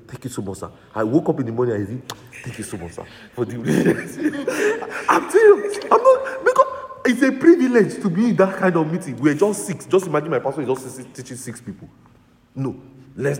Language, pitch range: English, 120-180 Hz